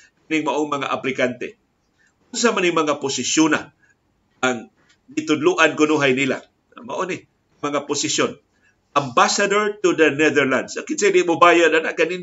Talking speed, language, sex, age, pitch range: 125 wpm, Filipino, male, 50-69, 150-195 Hz